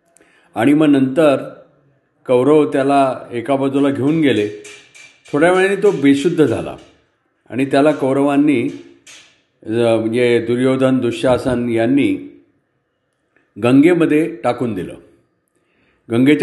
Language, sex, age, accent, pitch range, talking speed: Marathi, male, 50-69, native, 130-170 Hz, 65 wpm